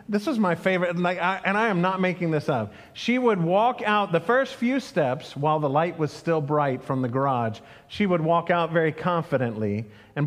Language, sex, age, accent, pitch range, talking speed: English, male, 40-59, American, 155-215 Hz, 205 wpm